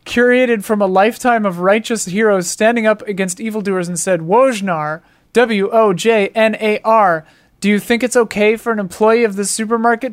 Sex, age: male, 30-49